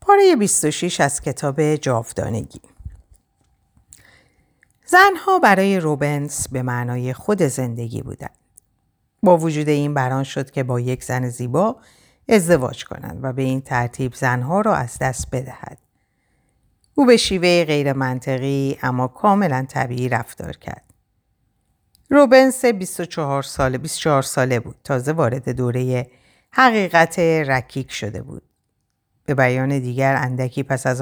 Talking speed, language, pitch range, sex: 120 wpm, Persian, 125-170 Hz, female